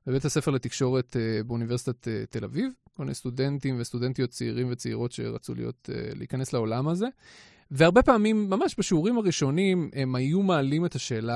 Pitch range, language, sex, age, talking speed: 125-165 Hz, Hebrew, male, 30-49, 145 wpm